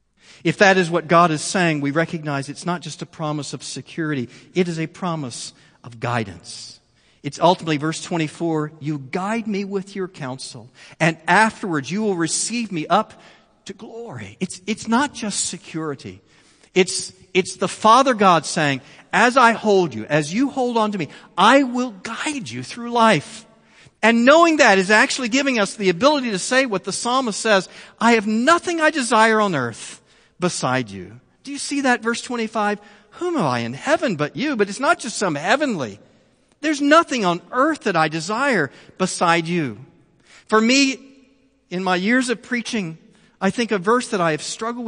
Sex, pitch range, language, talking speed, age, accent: male, 155-235 Hz, English, 180 wpm, 50-69, American